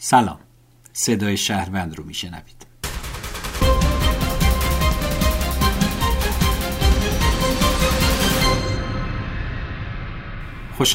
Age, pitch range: 50-69, 90-120 Hz